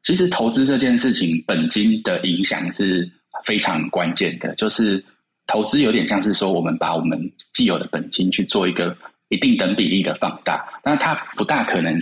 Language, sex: Chinese, male